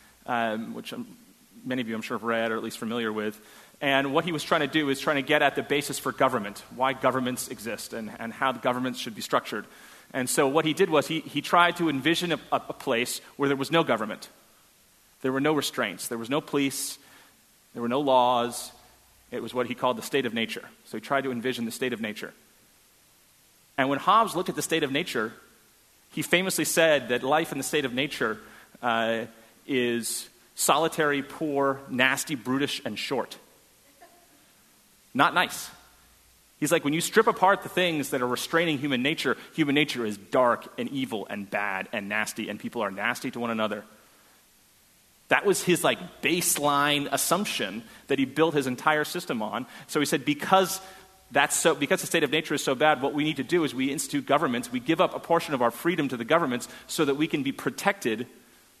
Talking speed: 205 wpm